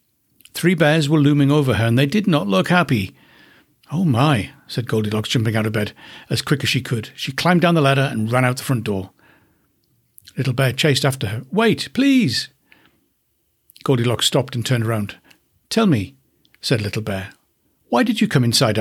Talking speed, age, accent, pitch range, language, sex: 185 wpm, 60-79, British, 110-165 Hz, English, male